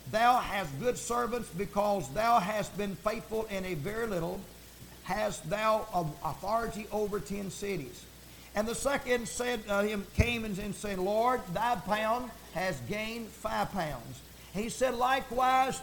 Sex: male